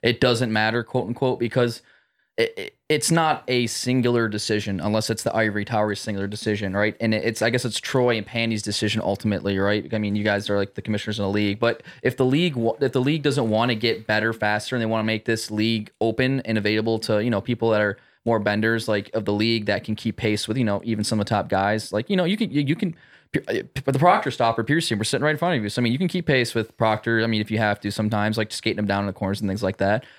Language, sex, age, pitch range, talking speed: English, male, 20-39, 105-120 Hz, 275 wpm